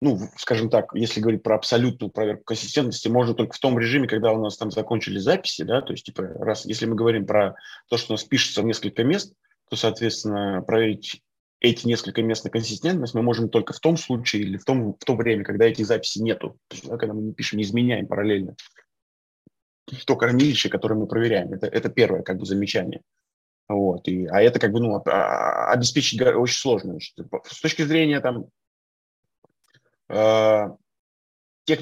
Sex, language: male, Russian